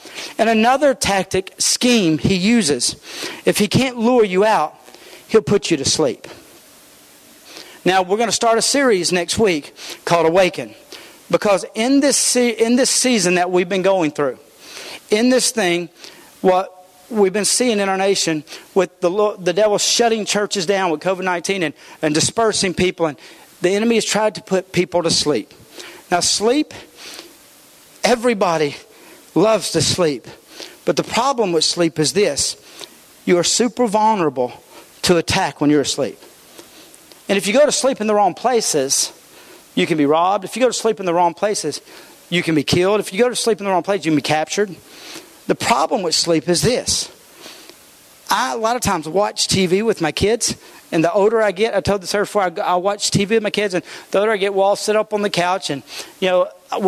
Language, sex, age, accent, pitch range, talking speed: English, male, 50-69, American, 175-220 Hz, 190 wpm